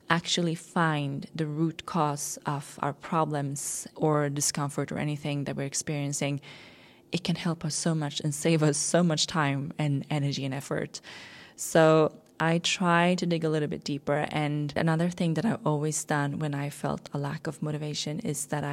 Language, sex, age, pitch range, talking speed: English, female, 20-39, 145-165 Hz, 180 wpm